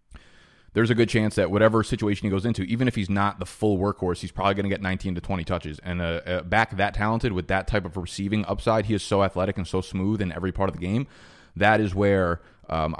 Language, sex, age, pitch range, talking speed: English, male, 20-39, 90-105 Hz, 255 wpm